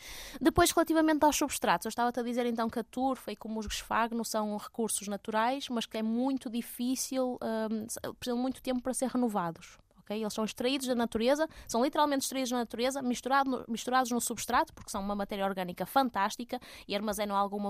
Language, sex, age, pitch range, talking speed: Portuguese, female, 20-39, 205-260 Hz, 190 wpm